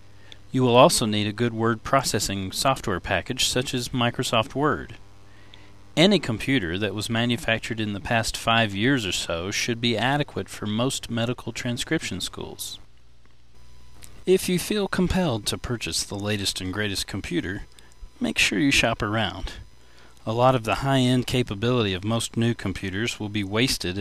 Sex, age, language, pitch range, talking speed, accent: male, 40-59, English, 95-125 Hz, 155 wpm, American